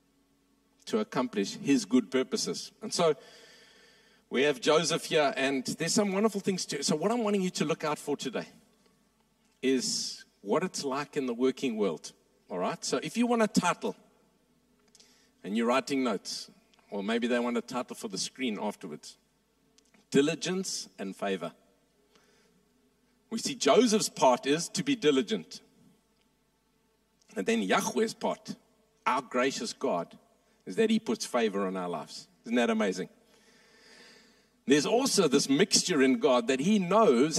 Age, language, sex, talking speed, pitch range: 50-69, English, male, 150 wpm, 175-225 Hz